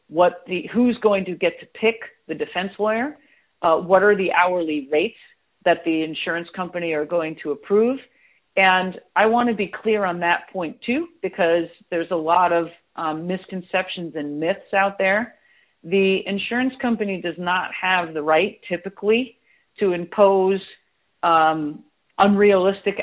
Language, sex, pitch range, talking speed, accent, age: English, female, 165-195 Hz, 155 wpm, American, 50-69